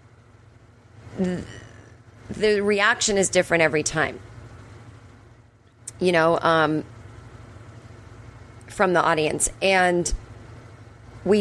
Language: English